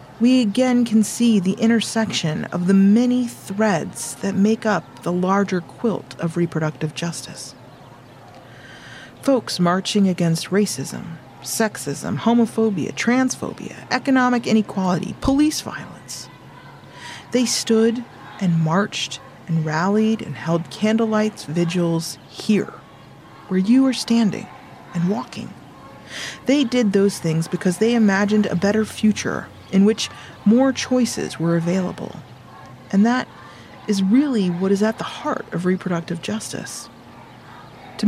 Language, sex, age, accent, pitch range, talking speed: English, female, 40-59, American, 170-230 Hz, 120 wpm